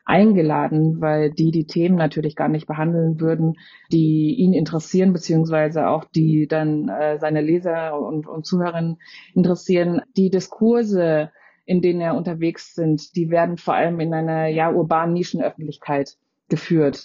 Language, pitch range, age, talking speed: German, 155-180 Hz, 30-49, 145 wpm